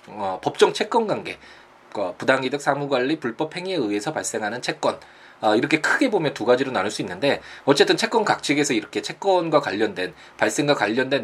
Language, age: Korean, 20-39